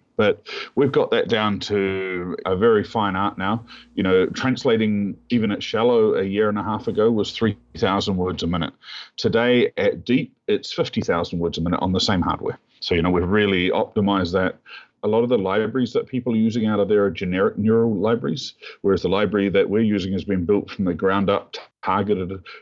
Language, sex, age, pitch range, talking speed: English, male, 40-59, 95-115 Hz, 205 wpm